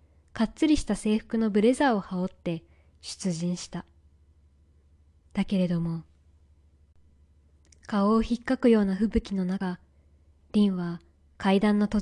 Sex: female